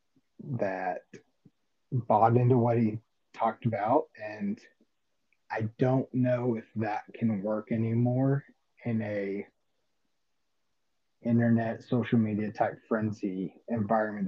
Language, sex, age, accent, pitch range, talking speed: English, male, 30-49, American, 110-125 Hz, 100 wpm